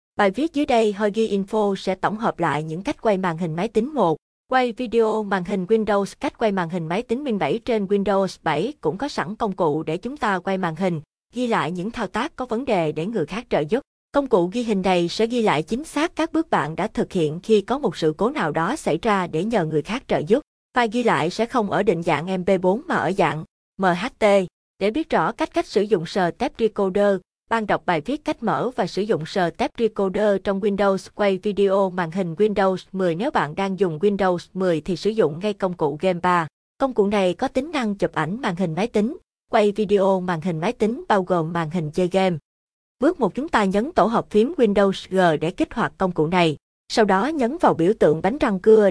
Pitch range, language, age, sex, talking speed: 180-225 Hz, Vietnamese, 20-39, female, 240 wpm